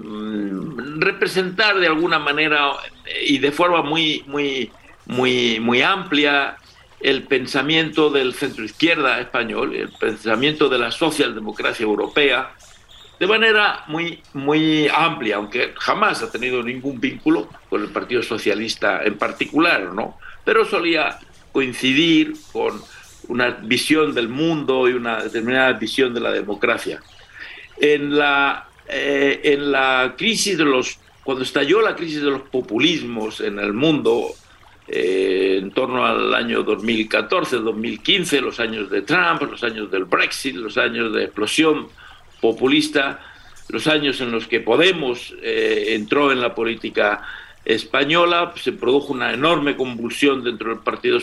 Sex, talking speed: male, 135 wpm